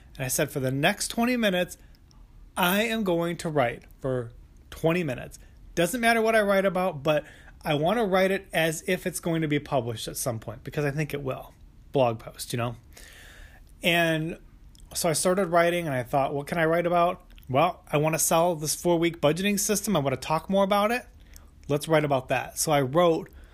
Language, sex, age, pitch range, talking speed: English, male, 30-49, 135-185 Hz, 205 wpm